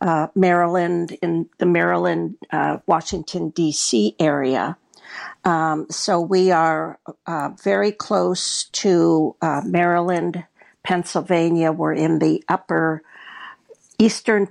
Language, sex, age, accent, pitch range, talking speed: English, female, 50-69, American, 160-190 Hz, 100 wpm